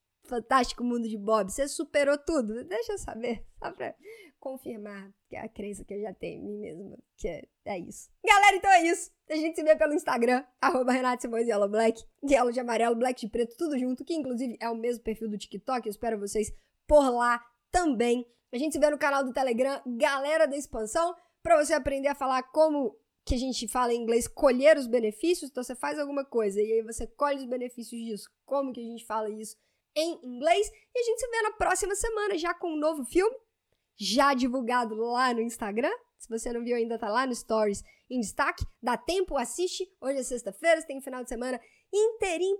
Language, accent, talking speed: Portuguese, Brazilian, 210 wpm